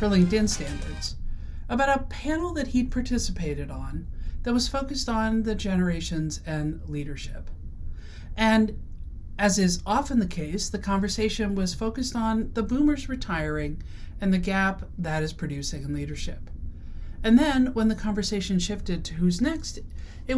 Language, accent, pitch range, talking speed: English, American, 150-225 Hz, 145 wpm